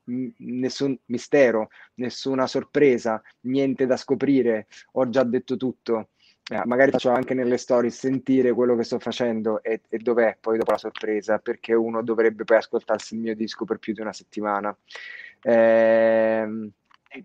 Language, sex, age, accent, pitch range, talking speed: Italian, male, 20-39, native, 110-125 Hz, 150 wpm